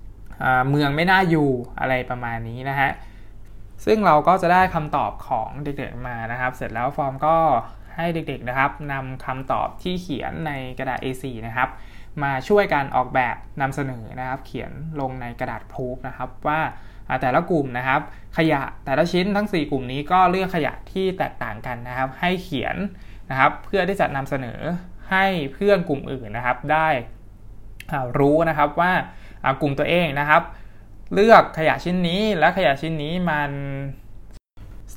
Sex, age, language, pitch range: male, 20-39, Thai, 125-155 Hz